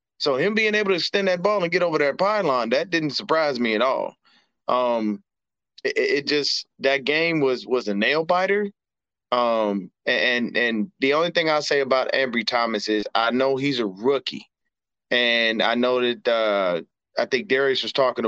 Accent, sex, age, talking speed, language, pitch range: American, male, 20-39, 185 wpm, English, 115-135 Hz